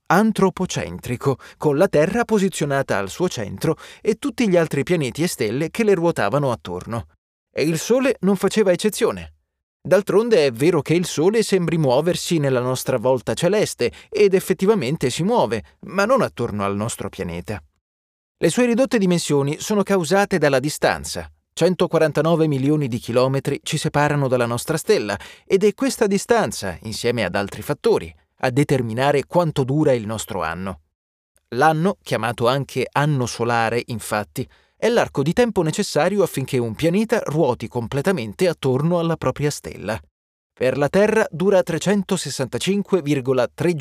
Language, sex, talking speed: Italian, male, 140 wpm